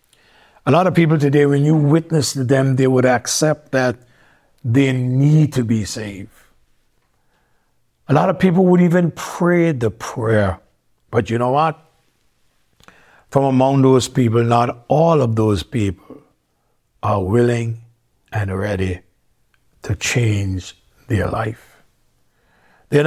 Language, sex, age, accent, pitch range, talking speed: English, male, 60-79, American, 105-130 Hz, 130 wpm